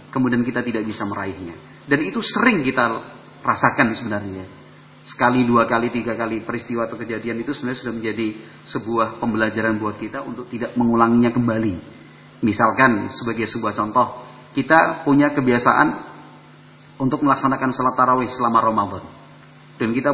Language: Indonesian